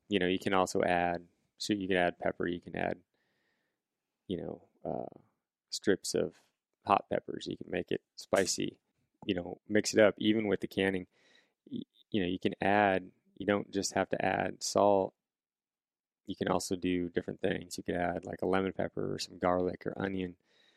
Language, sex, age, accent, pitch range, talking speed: English, male, 20-39, American, 90-100 Hz, 190 wpm